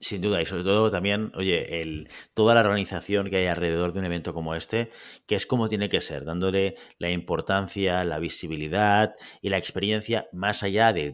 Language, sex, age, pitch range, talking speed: Spanish, male, 30-49, 85-105 Hz, 195 wpm